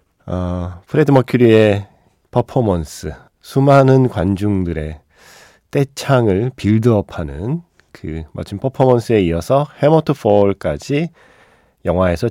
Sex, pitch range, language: male, 90-130 Hz, Korean